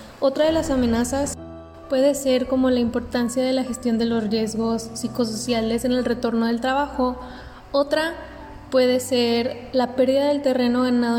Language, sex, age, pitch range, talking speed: English, female, 20-39, 235-260 Hz, 155 wpm